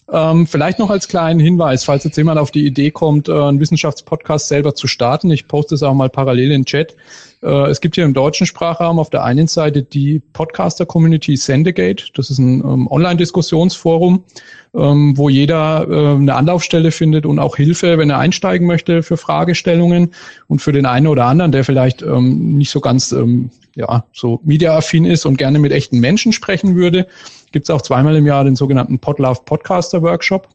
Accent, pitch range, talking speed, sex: German, 130-160 Hz, 170 wpm, male